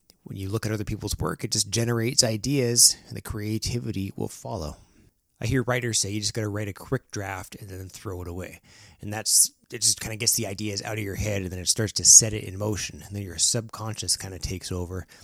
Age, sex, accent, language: 30-49, male, American, English